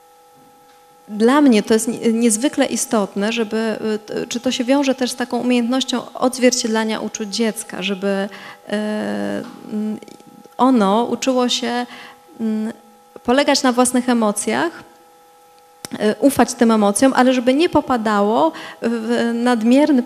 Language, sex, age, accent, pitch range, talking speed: Polish, female, 20-39, native, 200-245 Hz, 105 wpm